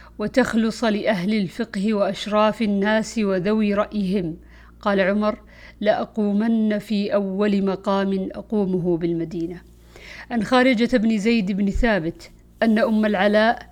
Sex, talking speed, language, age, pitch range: female, 110 wpm, Arabic, 50-69, 190-230 Hz